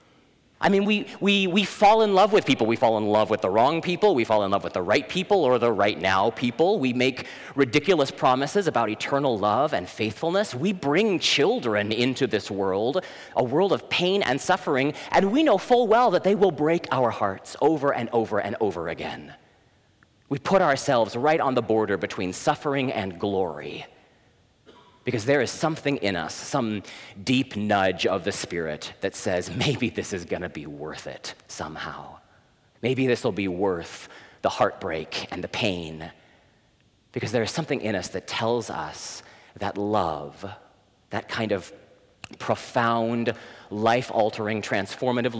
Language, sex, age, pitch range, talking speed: English, male, 30-49, 105-150 Hz, 170 wpm